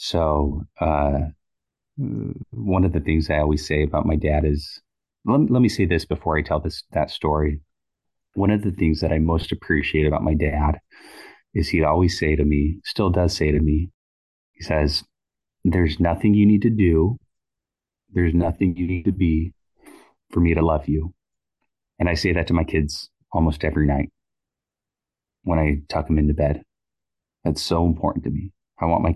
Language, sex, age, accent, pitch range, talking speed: English, male, 30-49, American, 75-85 Hz, 185 wpm